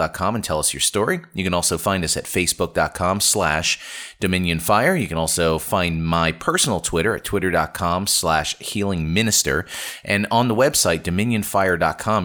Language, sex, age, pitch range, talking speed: English, male, 30-49, 80-95 Hz, 155 wpm